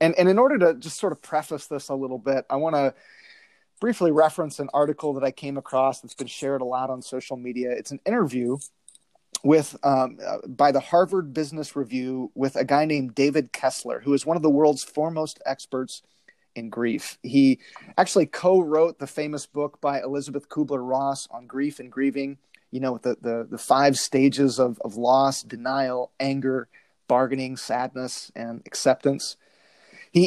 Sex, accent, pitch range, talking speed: male, American, 130-155 Hz, 180 wpm